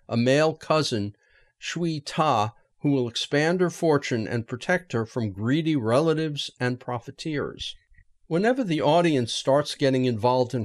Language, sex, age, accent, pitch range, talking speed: English, male, 50-69, American, 130-180 Hz, 140 wpm